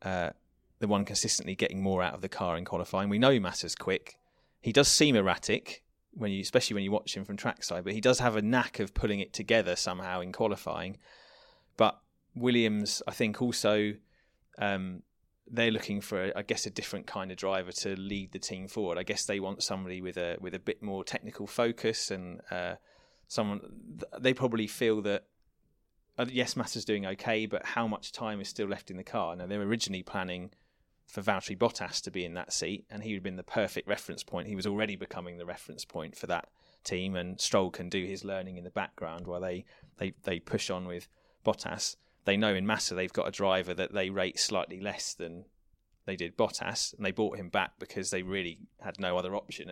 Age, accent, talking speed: 30-49, British, 210 wpm